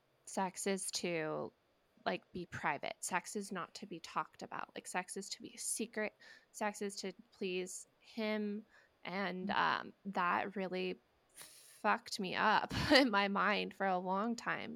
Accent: American